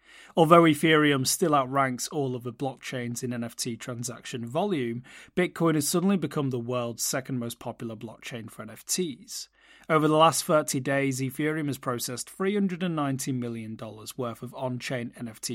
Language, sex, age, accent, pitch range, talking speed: English, male, 30-49, British, 130-160 Hz, 145 wpm